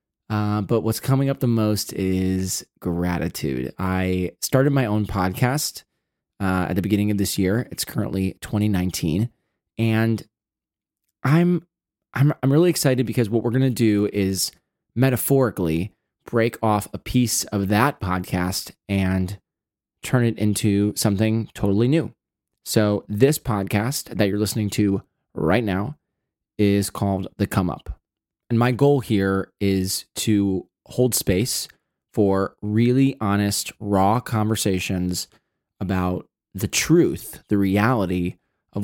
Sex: male